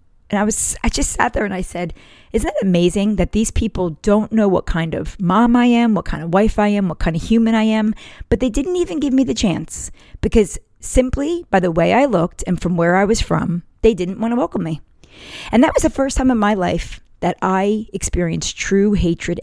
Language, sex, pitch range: English, female, 180-235 Hz